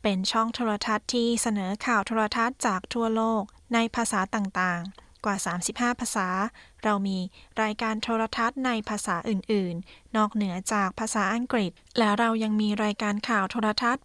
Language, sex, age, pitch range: Thai, female, 10-29, 200-230 Hz